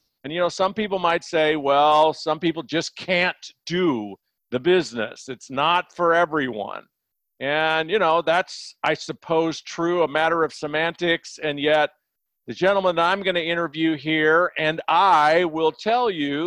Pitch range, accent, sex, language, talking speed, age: 145-185 Hz, American, male, English, 160 wpm, 50-69